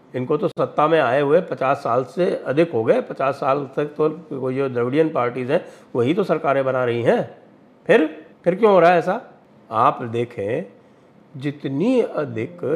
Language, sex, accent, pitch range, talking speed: English, male, Indian, 125-165 Hz, 180 wpm